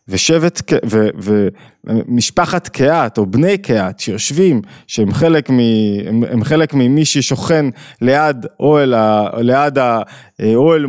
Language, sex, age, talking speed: Hebrew, male, 20-39, 75 wpm